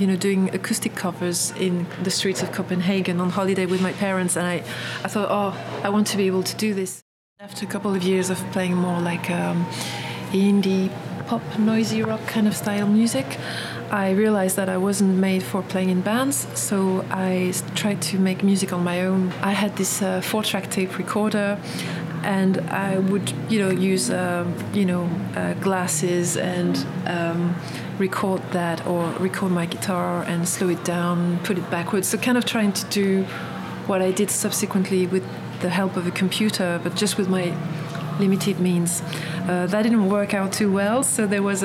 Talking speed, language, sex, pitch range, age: 190 wpm, English, female, 175-200 Hz, 30-49